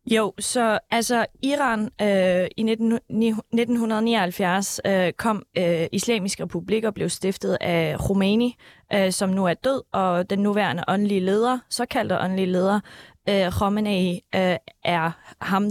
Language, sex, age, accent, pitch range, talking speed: Danish, female, 20-39, native, 190-235 Hz, 110 wpm